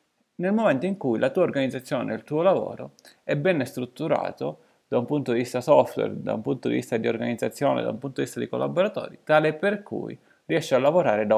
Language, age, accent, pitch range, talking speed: Italian, 30-49, native, 120-155 Hz, 210 wpm